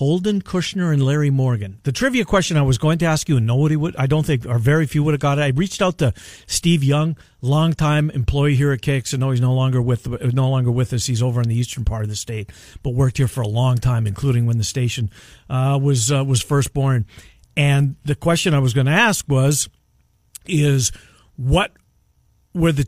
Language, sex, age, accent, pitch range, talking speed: English, male, 50-69, American, 120-160 Hz, 225 wpm